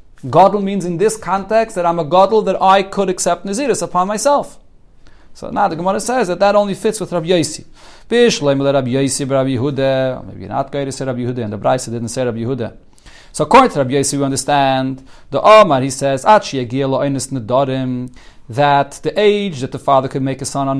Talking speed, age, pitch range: 175 wpm, 40-59, 135-185 Hz